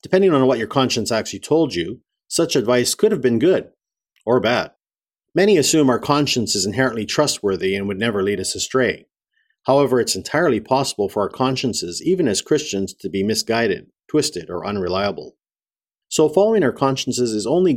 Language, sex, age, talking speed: English, male, 50-69, 170 wpm